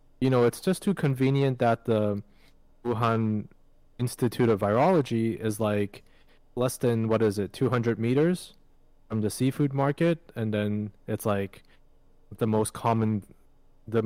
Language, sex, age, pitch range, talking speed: English, male, 20-39, 105-125 Hz, 140 wpm